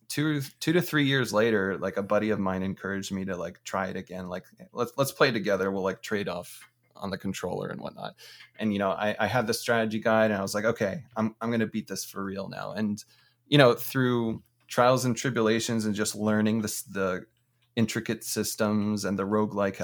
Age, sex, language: 20-39, male, English